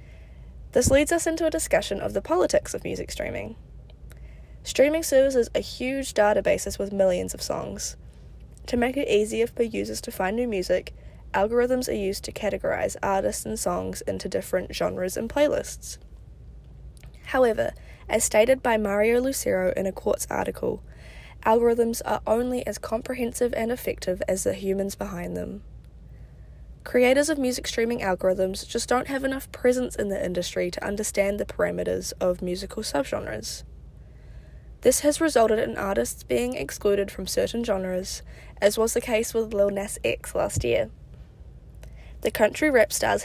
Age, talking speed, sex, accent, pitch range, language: 10-29, 155 wpm, female, Australian, 190-250 Hz, English